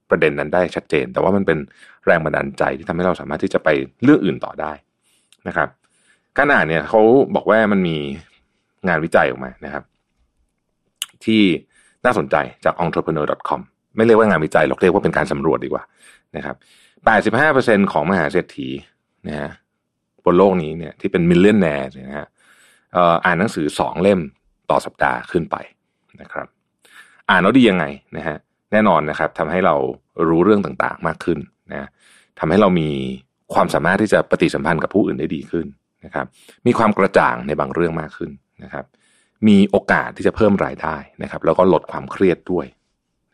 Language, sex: Thai, male